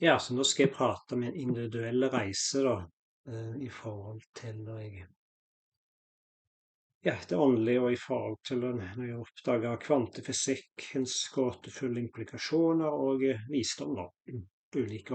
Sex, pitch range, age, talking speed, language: male, 115-135 Hz, 30-49, 135 wpm, English